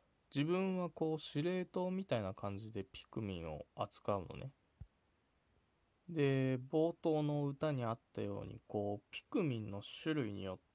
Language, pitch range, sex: Japanese, 100-145 Hz, male